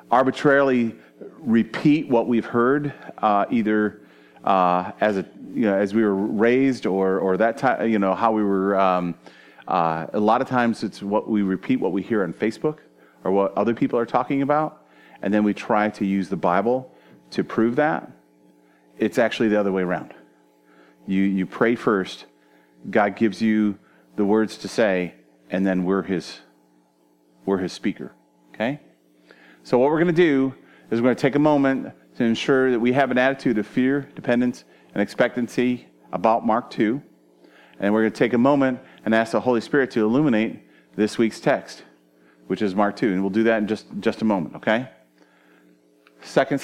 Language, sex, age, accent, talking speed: English, male, 40-59, American, 185 wpm